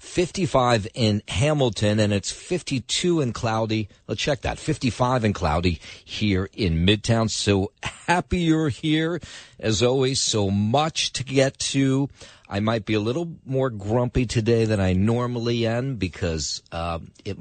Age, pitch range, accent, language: 40-59, 95-135 Hz, American, English